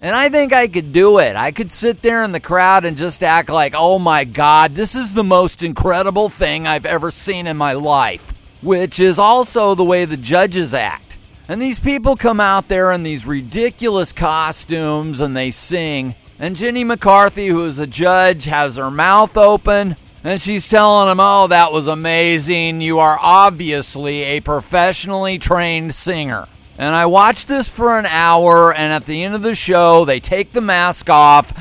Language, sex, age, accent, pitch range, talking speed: English, male, 40-59, American, 155-200 Hz, 190 wpm